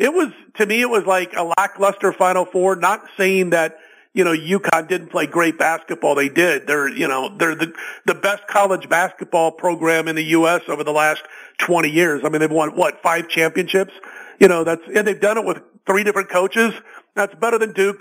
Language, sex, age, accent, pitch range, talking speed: English, male, 50-69, American, 170-210 Hz, 210 wpm